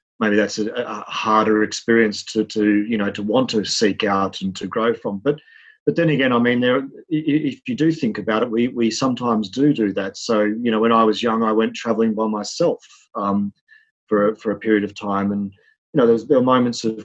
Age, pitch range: 30-49, 105-145 Hz